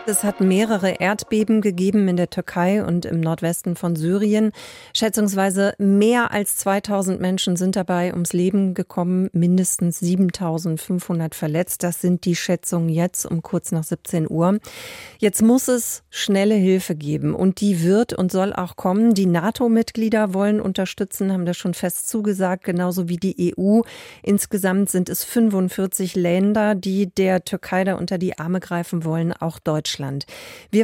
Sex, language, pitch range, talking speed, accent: female, German, 175-210 Hz, 155 wpm, German